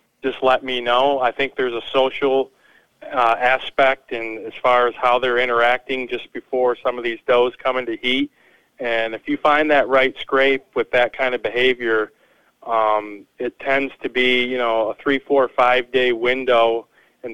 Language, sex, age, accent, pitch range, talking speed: English, male, 40-59, American, 120-135 Hz, 175 wpm